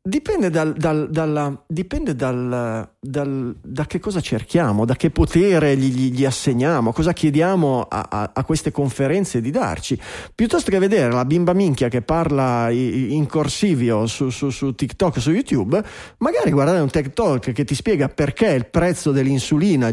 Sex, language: male, Italian